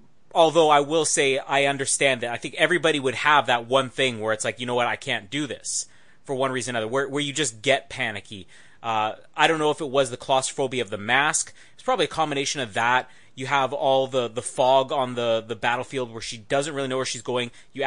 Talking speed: 245 wpm